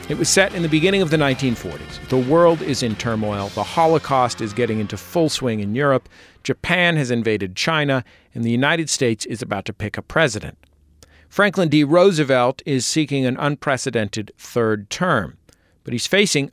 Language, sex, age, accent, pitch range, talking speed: English, male, 50-69, American, 110-155 Hz, 180 wpm